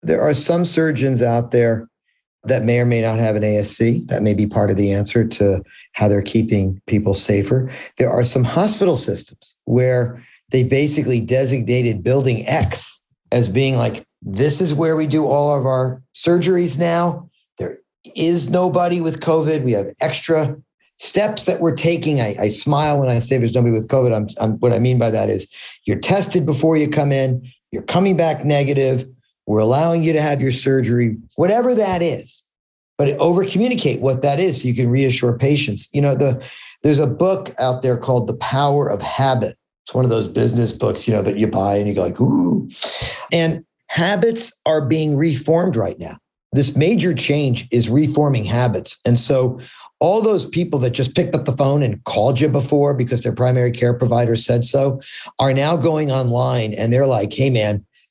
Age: 50-69